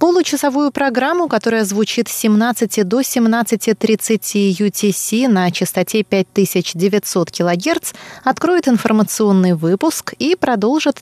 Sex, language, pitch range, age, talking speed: female, Russian, 185-235 Hz, 20-39, 100 wpm